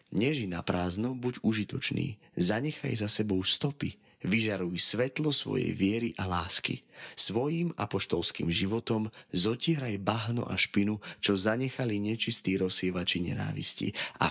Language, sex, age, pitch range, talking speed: Slovak, male, 30-49, 95-135 Hz, 115 wpm